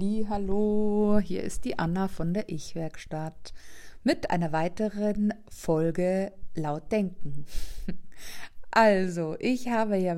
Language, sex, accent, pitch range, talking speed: German, female, German, 170-210 Hz, 110 wpm